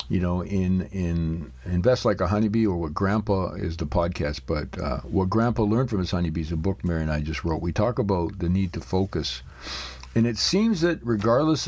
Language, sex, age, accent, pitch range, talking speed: English, male, 50-69, American, 80-110 Hz, 215 wpm